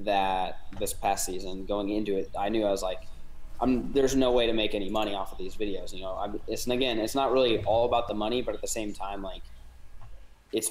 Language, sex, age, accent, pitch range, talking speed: English, male, 20-39, American, 95-115 Hz, 245 wpm